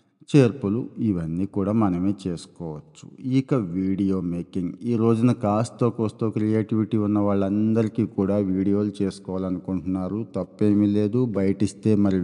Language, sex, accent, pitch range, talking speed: Telugu, male, native, 95-115 Hz, 75 wpm